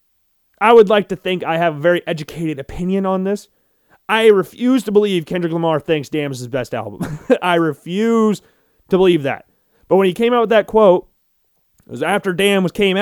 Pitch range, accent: 160-210 Hz, American